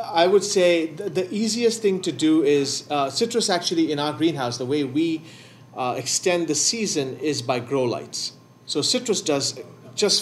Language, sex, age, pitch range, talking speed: English, male, 30-49, 135-170 Hz, 180 wpm